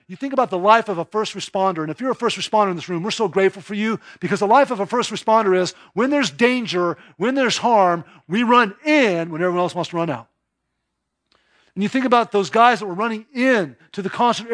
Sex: male